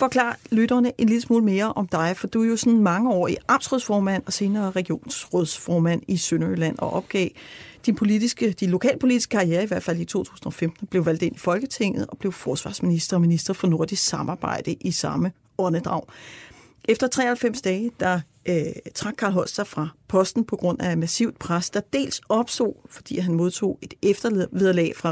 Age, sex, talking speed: 40-59, female, 175 wpm